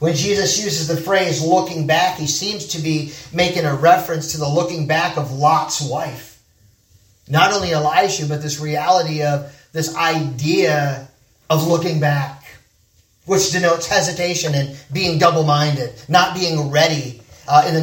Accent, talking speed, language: American, 150 wpm, English